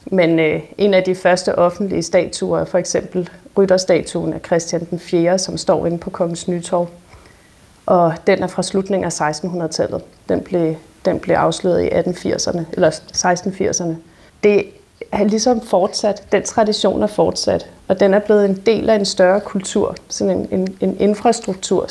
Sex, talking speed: female, 165 wpm